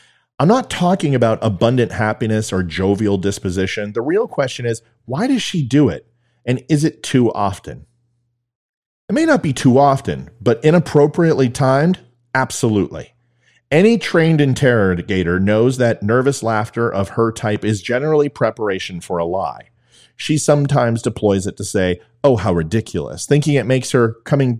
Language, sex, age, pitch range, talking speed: English, male, 40-59, 105-140 Hz, 155 wpm